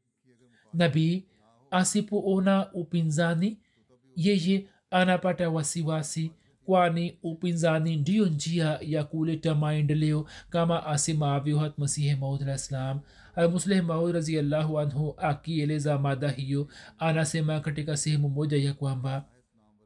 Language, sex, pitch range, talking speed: Swahili, male, 145-180 Hz, 95 wpm